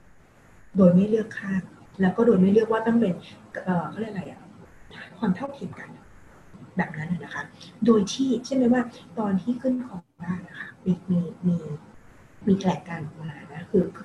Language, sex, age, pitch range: Thai, female, 30-49, 175-210 Hz